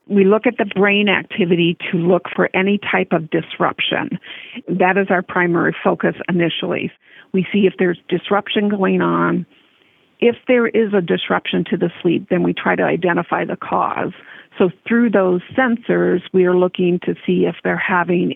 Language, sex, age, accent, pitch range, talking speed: English, female, 50-69, American, 175-195 Hz, 175 wpm